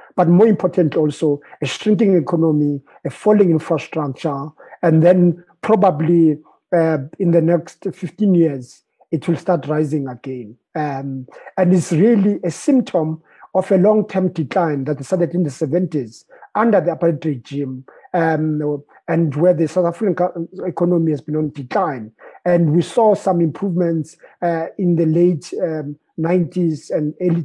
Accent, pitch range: South African, 155-185 Hz